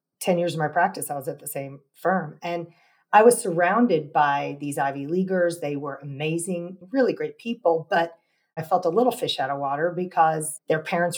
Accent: American